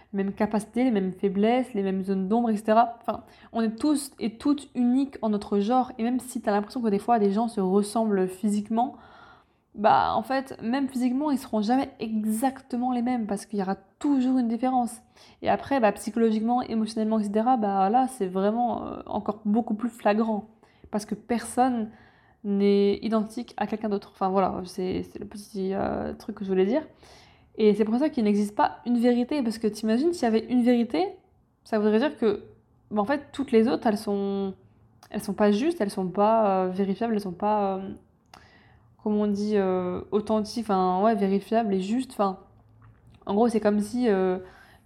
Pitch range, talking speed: 200-240 Hz, 195 wpm